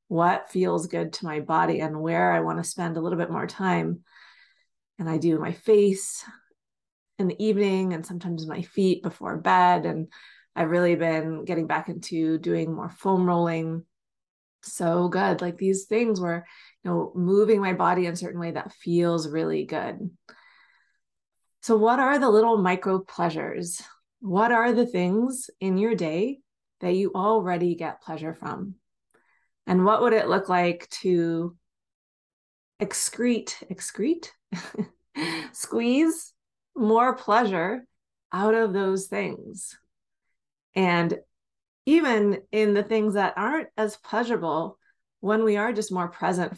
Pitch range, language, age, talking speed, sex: 175-215 Hz, English, 30-49, 145 wpm, female